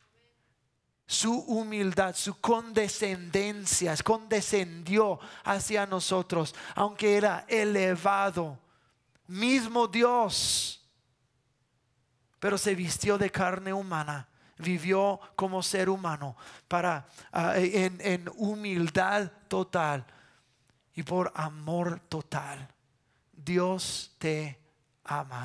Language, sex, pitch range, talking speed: English, male, 150-220 Hz, 80 wpm